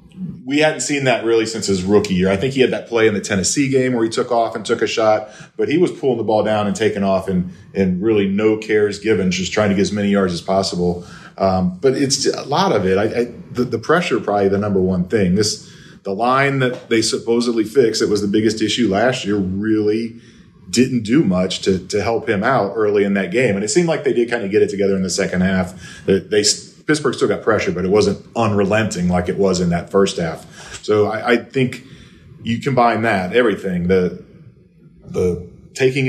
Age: 40-59